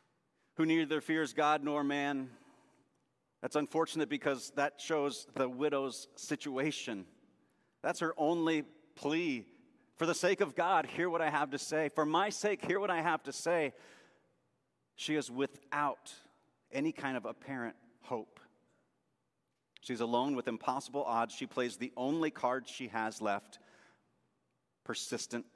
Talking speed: 140 wpm